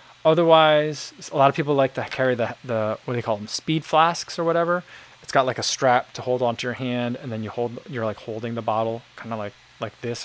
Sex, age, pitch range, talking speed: male, 20-39, 120-160 Hz, 250 wpm